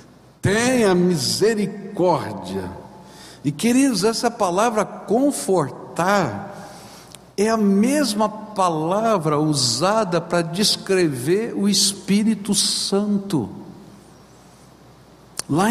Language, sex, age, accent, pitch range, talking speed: Portuguese, male, 60-79, Brazilian, 185-230 Hz, 70 wpm